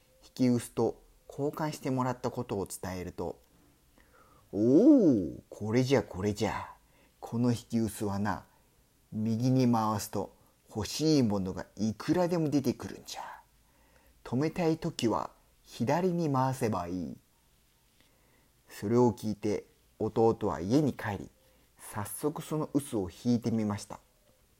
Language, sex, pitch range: Spanish, male, 105-145 Hz